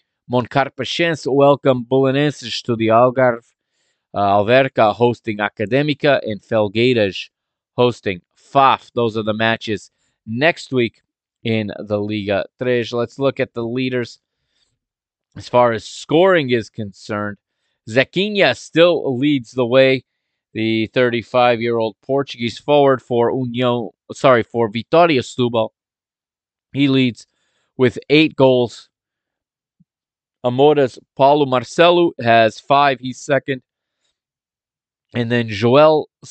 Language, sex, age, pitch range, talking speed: English, male, 30-49, 110-135 Hz, 110 wpm